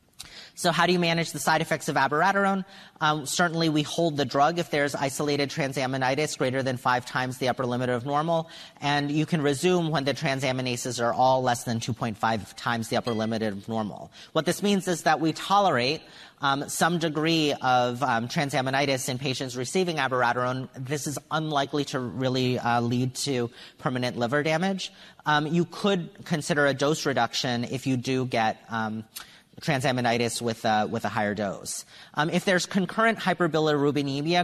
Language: English